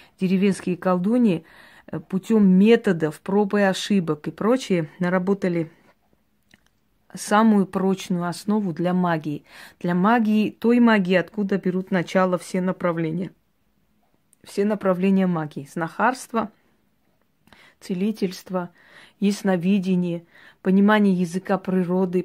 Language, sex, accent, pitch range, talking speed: Russian, female, native, 180-210 Hz, 90 wpm